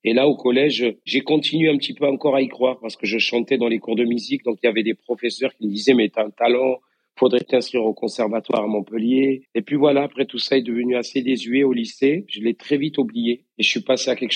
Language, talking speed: French, 270 wpm